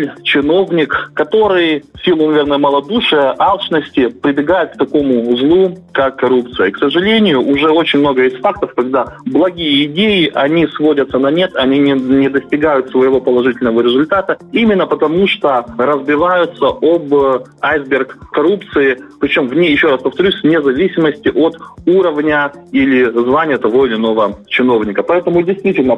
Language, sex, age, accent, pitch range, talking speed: Russian, male, 20-39, native, 130-170 Hz, 140 wpm